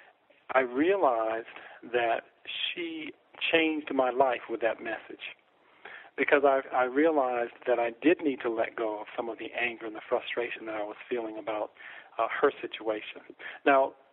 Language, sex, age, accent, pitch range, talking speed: English, male, 40-59, American, 115-145 Hz, 160 wpm